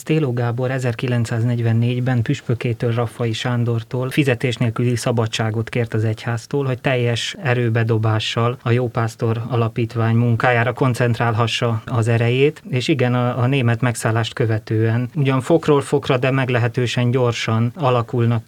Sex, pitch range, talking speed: male, 115-130 Hz, 115 wpm